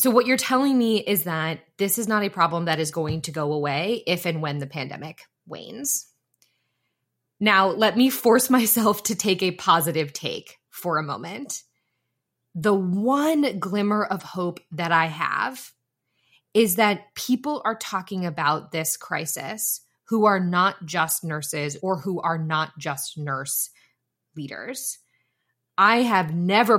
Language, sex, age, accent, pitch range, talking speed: English, female, 20-39, American, 160-215 Hz, 150 wpm